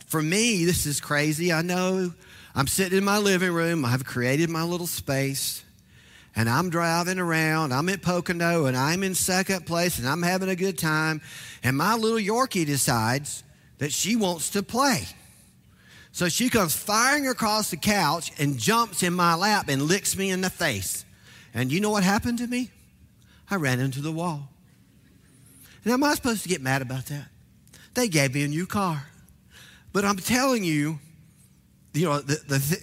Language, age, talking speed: English, 40-59, 185 wpm